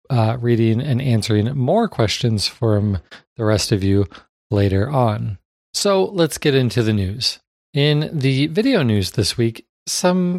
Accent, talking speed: American, 150 wpm